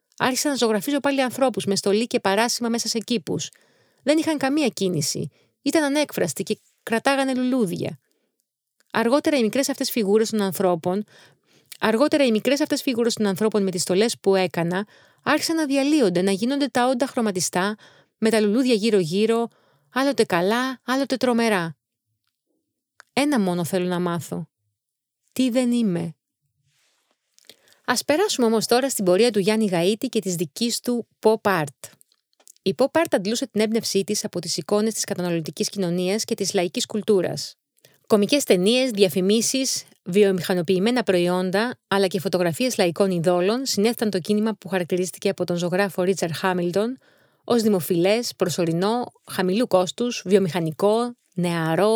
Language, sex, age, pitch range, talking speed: Greek, female, 30-49, 185-245 Hz, 140 wpm